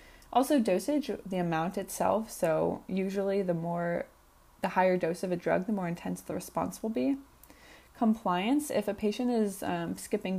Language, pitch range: English, 175-220 Hz